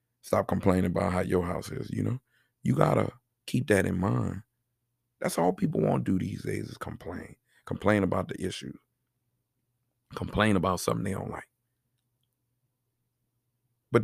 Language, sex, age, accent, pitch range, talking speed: English, male, 40-59, American, 100-125 Hz, 160 wpm